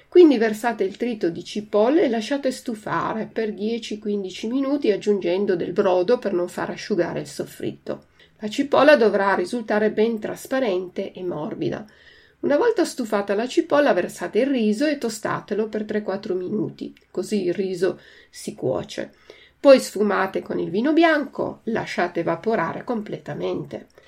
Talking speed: 140 wpm